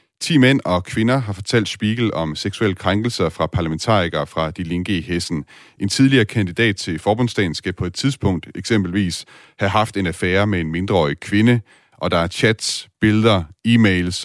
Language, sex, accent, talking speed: Danish, male, native, 175 wpm